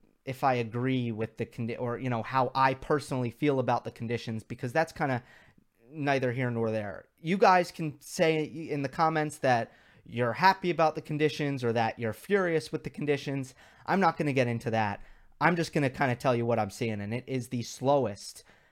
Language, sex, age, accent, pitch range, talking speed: English, male, 30-49, American, 120-155 Hz, 215 wpm